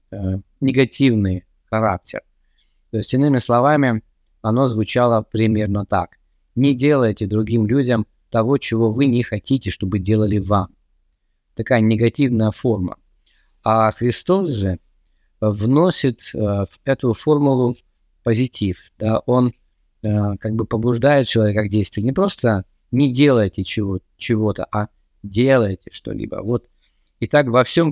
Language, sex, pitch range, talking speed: Russian, male, 105-130 Hz, 115 wpm